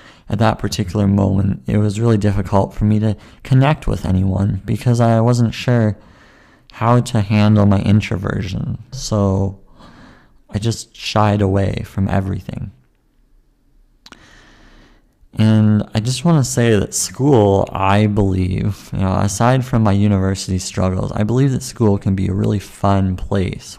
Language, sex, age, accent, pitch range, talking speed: English, male, 20-39, American, 95-105 Hz, 140 wpm